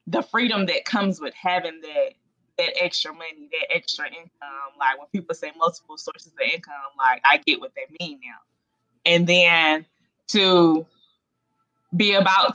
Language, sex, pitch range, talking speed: English, female, 165-250 Hz, 160 wpm